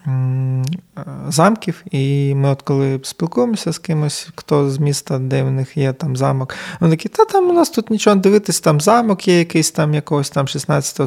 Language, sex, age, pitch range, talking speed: Ukrainian, male, 20-39, 135-165 Hz, 190 wpm